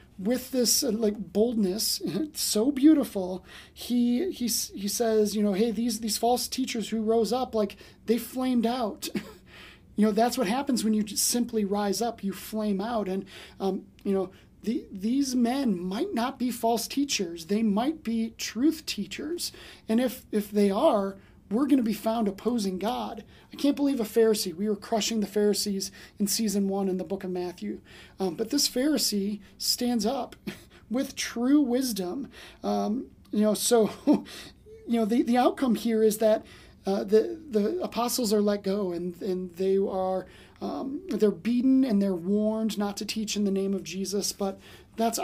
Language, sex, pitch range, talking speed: English, male, 200-240 Hz, 180 wpm